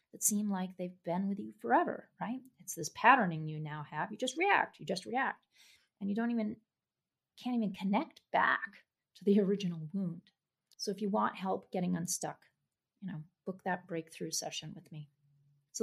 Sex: female